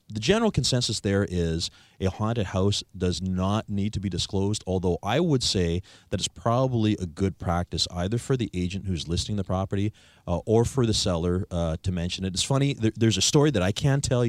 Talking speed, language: 215 wpm, English